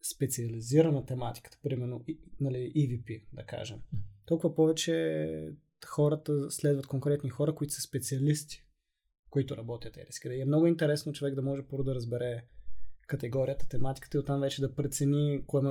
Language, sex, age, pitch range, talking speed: Bulgarian, male, 20-39, 120-145 Hz, 155 wpm